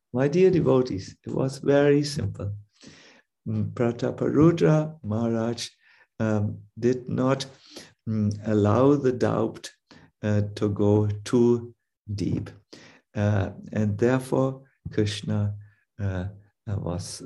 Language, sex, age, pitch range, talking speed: English, male, 50-69, 100-130 Hz, 95 wpm